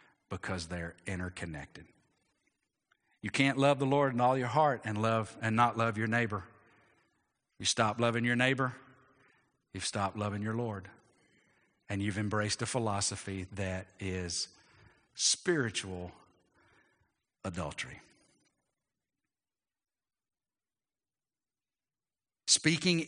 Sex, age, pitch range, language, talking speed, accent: male, 50-69, 95-130 Hz, English, 100 wpm, American